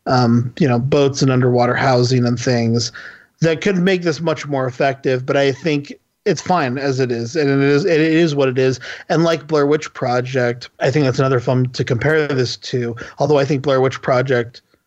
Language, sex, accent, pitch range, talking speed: English, male, American, 125-150 Hz, 210 wpm